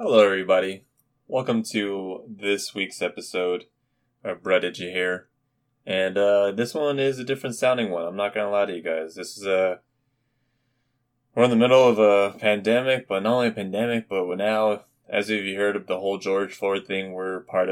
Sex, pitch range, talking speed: male, 95-125 Hz, 195 wpm